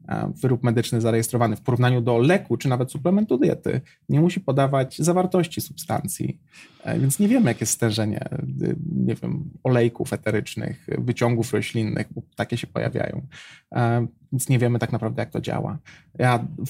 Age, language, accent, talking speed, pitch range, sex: 20-39, Polish, native, 145 wpm, 115-140 Hz, male